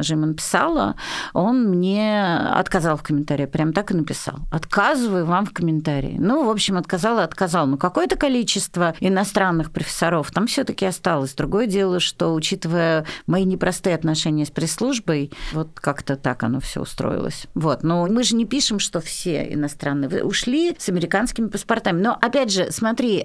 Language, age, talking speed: Russian, 40-59, 165 wpm